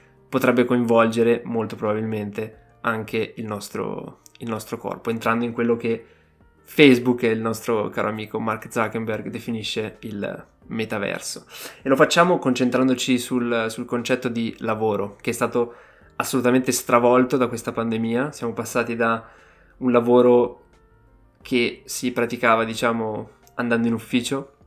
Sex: male